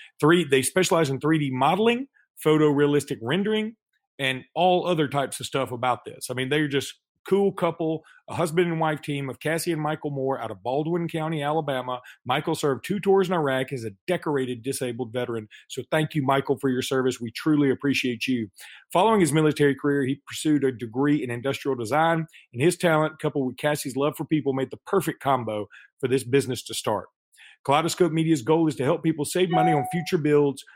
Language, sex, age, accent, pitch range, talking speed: English, male, 40-59, American, 135-165 Hz, 195 wpm